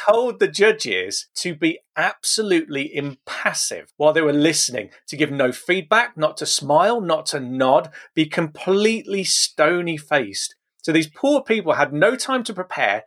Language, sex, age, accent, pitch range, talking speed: English, male, 40-59, British, 140-175 Hz, 150 wpm